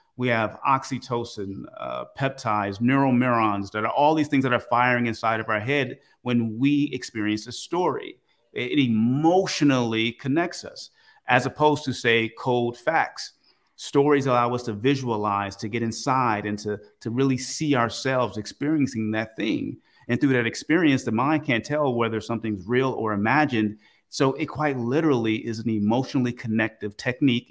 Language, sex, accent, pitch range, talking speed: English, male, American, 110-135 Hz, 155 wpm